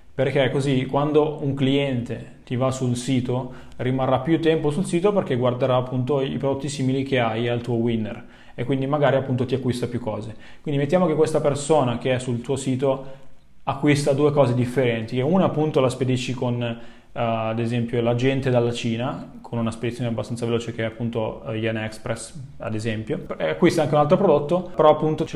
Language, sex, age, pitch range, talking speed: Italian, male, 20-39, 120-145 Hz, 190 wpm